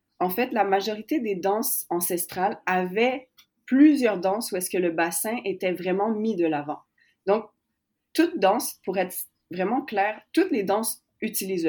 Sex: female